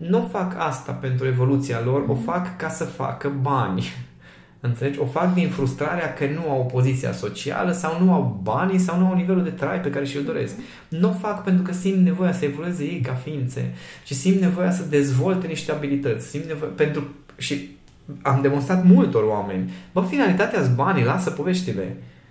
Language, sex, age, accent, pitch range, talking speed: Romanian, male, 20-39, native, 125-160 Hz, 185 wpm